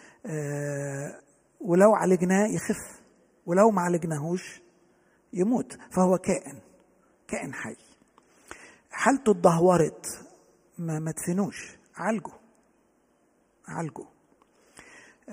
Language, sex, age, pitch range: Arabic, male, 50-69, 160-220 Hz